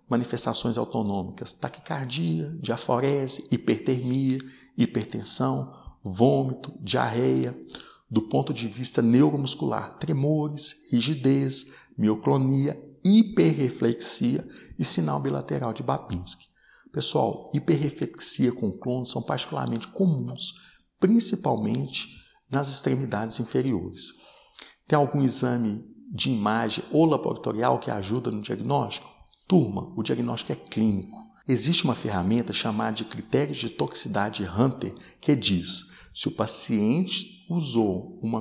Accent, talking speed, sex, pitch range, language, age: Brazilian, 100 wpm, male, 110-150 Hz, Portuguese, 60-79